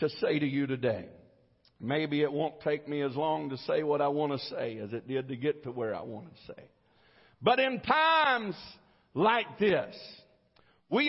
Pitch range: 190-255 Hz